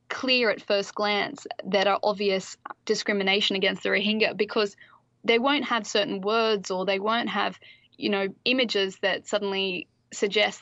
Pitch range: 195-220 Hz